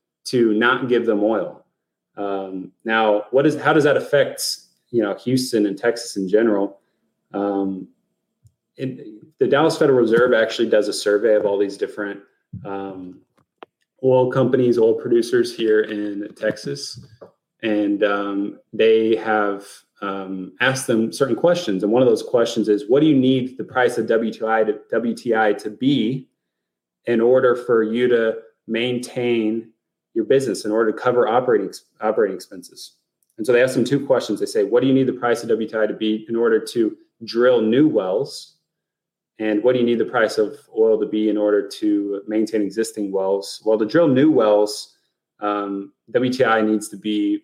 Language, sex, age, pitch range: English, male, 20-39, 100-135 Hz